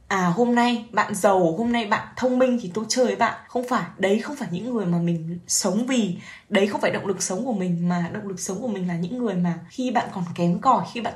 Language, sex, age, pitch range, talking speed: Vietnamese, female, 10-29, 185-250 Hz, 275 wpm